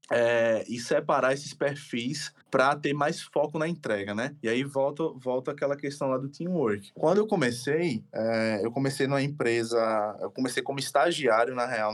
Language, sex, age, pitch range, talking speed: Portuguese, male, 20-39, 110-145 Hz, 170 wpm